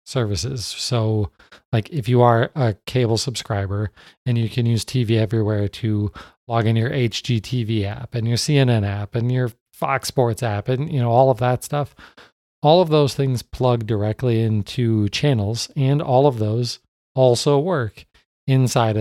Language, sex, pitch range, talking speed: English, male, 105-140 Hz, 165 wpm